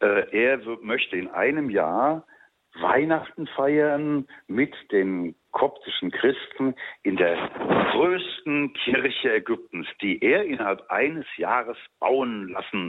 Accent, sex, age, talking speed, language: German, male, 60-79, 105 wpm, German